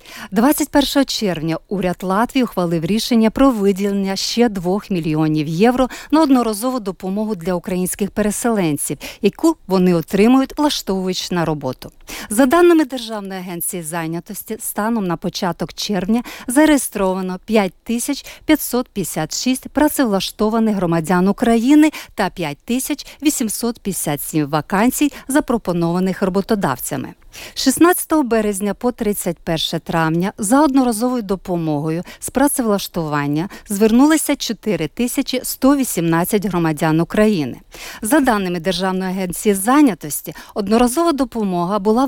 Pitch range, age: 180-250 Hz, 50-69